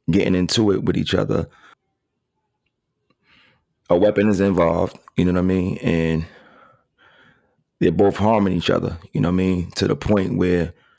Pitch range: 85-100 Hz